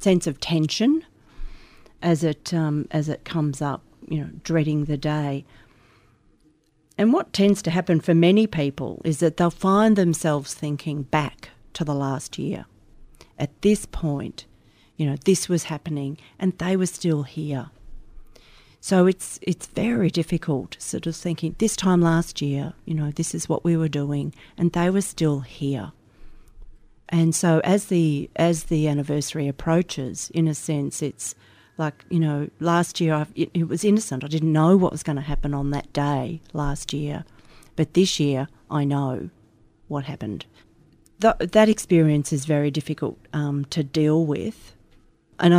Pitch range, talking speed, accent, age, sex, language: 140-170 Hz, 165 wpm, Australian, 40-59, female, English